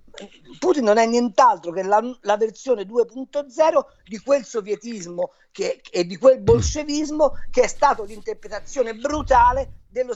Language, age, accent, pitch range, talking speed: Italian, 50-69, native, 175-270 Hz, 135 wpm